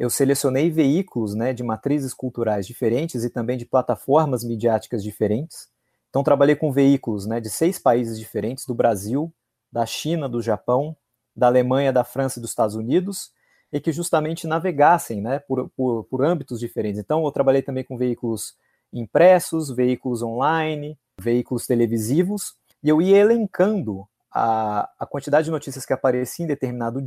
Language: Portuguese